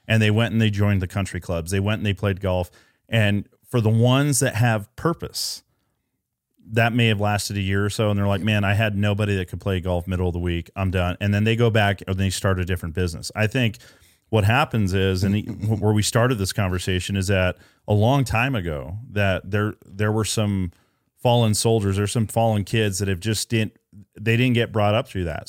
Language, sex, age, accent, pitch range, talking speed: English, male, 30-49, American, 95-115 Hz, 230 wpm